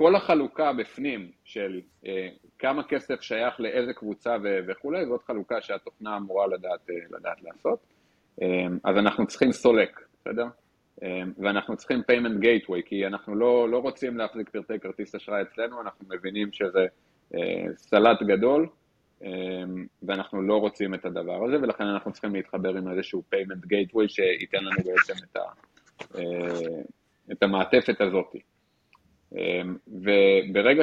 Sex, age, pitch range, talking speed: male, 30-49, 95-115 Hz, 140 wpm